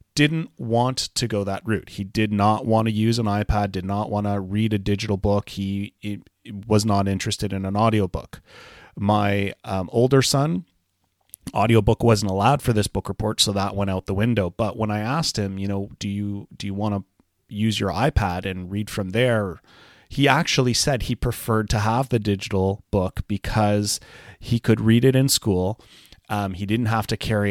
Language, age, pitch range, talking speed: English, 30-49, 95-115 Hz, 195 wpm